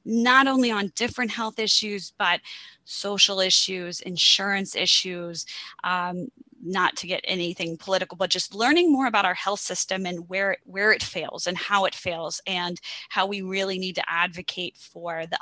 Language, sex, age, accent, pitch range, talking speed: English, female, 20-39, American, 180-245 Hz, 165 wpm